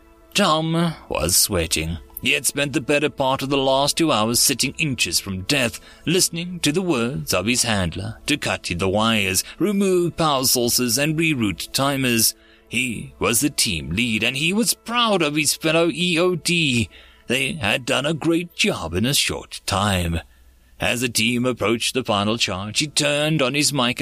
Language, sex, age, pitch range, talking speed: English, male, 30-49, 110-150 Hz, 175 wpm